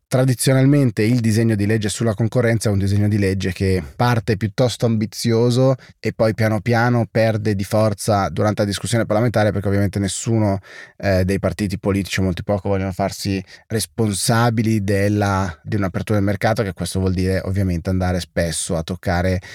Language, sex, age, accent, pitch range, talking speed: Italian, male, 20-39, native, 95-115 Hz, 165 wpm